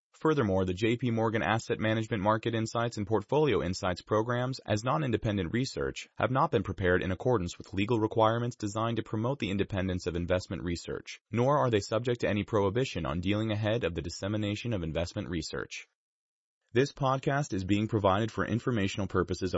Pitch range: 90-115 Hz